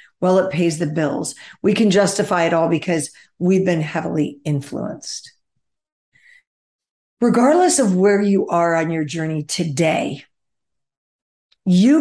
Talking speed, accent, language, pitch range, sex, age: 125 wpm, American, English, 160-195 Hz, female, 50-69